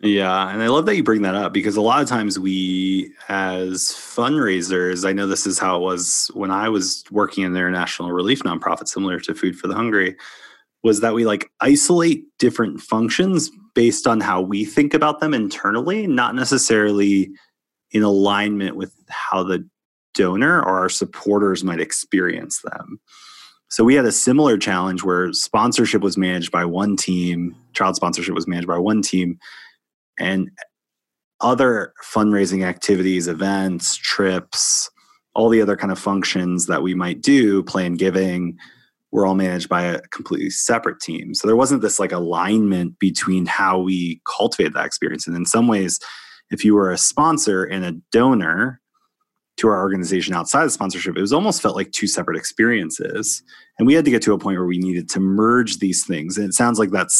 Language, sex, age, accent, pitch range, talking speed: English, male, 20-39, American, 90-105 Hz, 180 wpm